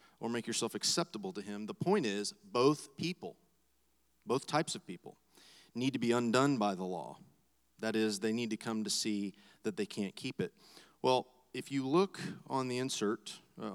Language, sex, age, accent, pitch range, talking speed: English, male, 30-49, American, 105-140 Hz, 190 wpm